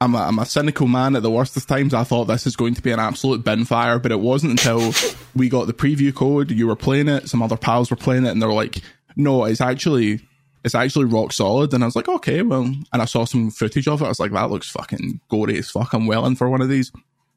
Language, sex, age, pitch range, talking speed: English, male, 20-39, 120-140 Hz, 270 wpm